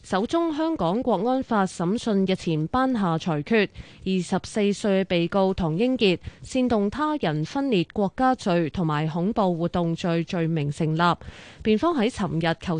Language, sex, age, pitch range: Chinese, female, 20-39, 170-230 Hz